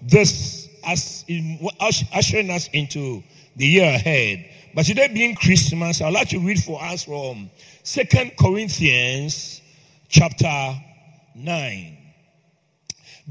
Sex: male